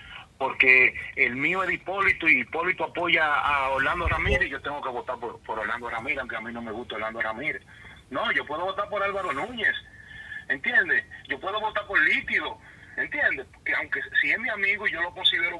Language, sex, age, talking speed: Spanish, male, 30-49, 195 wpm